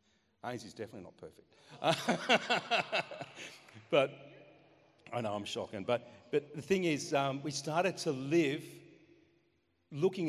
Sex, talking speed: male, 115 wpm